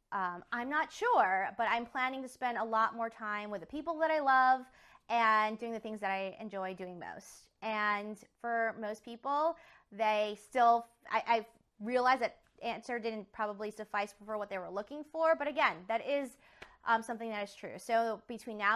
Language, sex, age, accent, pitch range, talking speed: English, female, 20-39, American, 195-245 Hz, 190 wpm